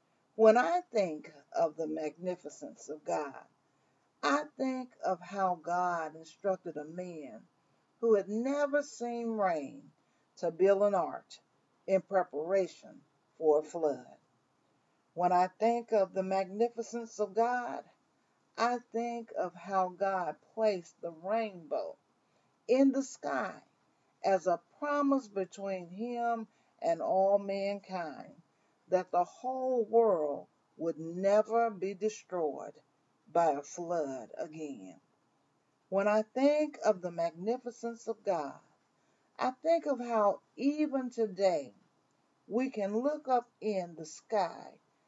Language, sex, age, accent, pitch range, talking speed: English, female, 40-59, American, 180-235 Hz, 120 wpm